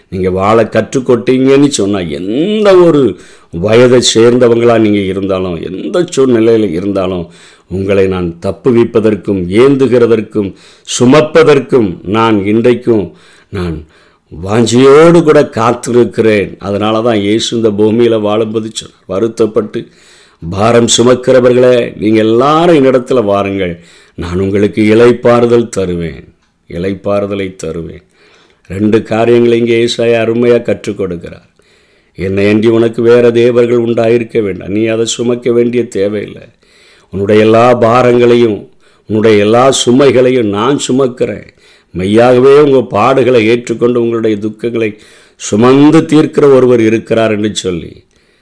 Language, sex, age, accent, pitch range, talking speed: Tamil, male, 50-69, native, 105-125 Hz, 100 wpm